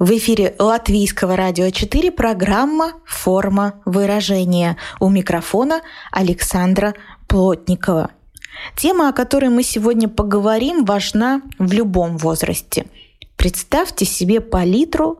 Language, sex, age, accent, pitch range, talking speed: Russian, female, 20-39, native, 180-250 Hz, 100 wpm